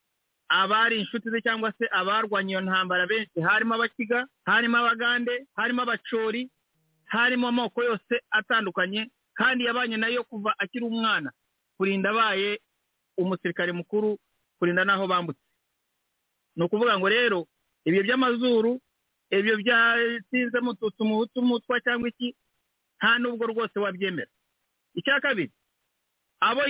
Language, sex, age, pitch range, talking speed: English, male, 50-69, 205-245 Hz, 115 wpm